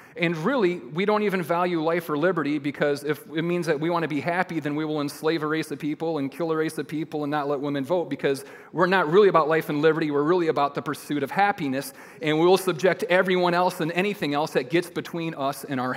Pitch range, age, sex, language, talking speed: 140-175 Hz, 40-59, male, English, 255 wpm